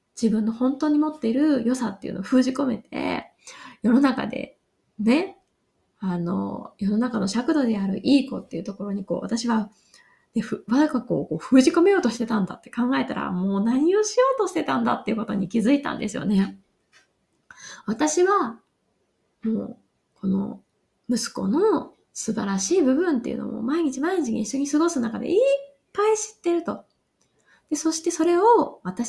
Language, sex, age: Japanese, female, 20-39